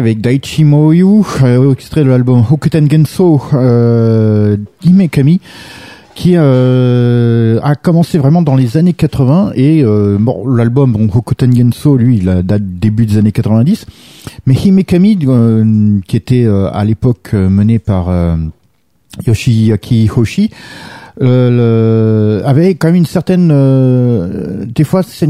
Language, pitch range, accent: French, 110-150 Hz, French